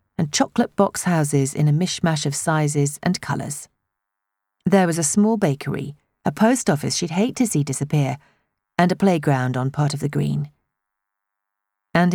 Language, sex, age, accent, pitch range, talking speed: English, female, 40-59, British, 125-175 Hz, 165 wpm